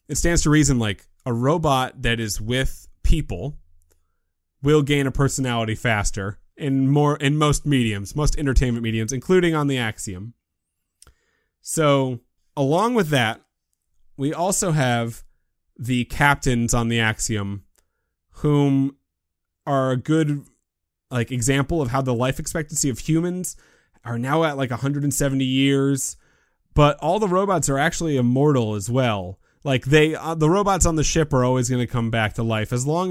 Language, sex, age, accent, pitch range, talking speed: English, male, 30-49, American, 110-150 Hz, 155 wpm